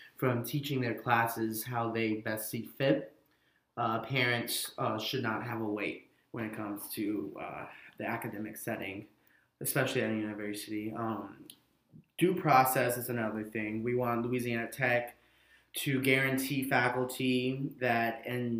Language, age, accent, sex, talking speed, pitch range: English, 20-39, American, male, 140 wpm, 110-125 Hz